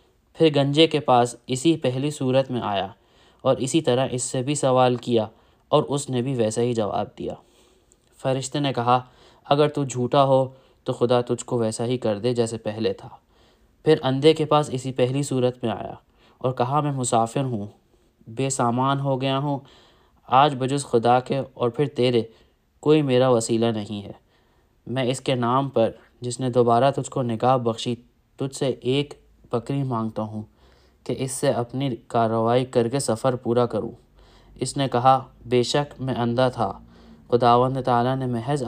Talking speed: 180 wpm